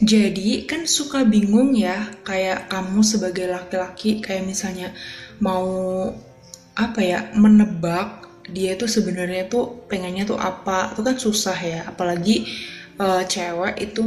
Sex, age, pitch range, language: female, 20-39, 180-215 Hz, Indonesian